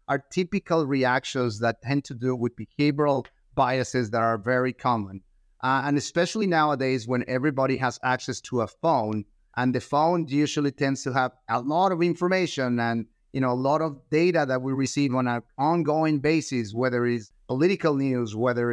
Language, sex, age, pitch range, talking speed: English, male, 30-49, 125-160 Hz, 175 wpm